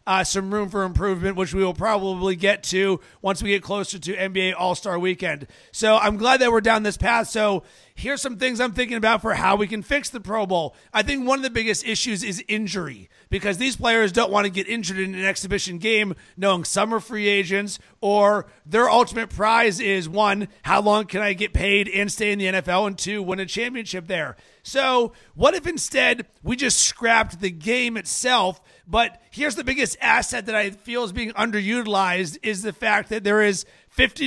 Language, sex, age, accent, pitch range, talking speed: English, male, 40-59, American, 195-230 Hz, 210 wpm